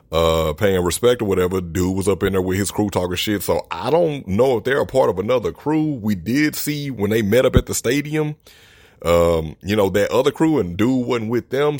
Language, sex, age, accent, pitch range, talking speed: English, male, 30-49, American, 85-110 Hz, 240 wpm